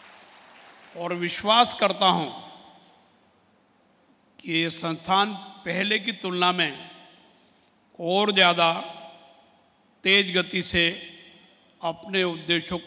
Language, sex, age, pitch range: Kannada, male, 60-79, 170-195 Hz